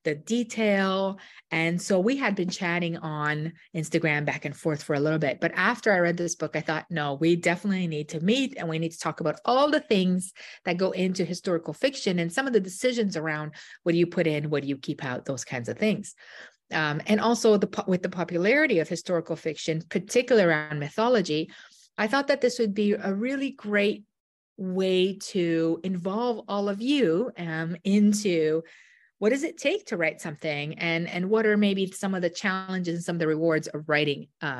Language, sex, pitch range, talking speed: English, female, 160-210 Hz, 205 wpm